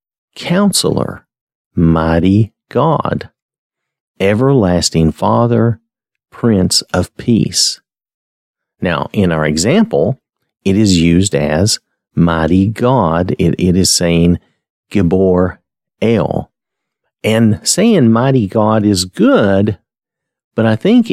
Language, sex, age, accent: English, male, 50-69, American